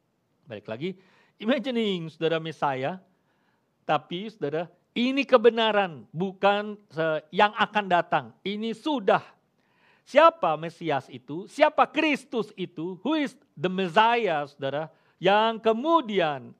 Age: 50-69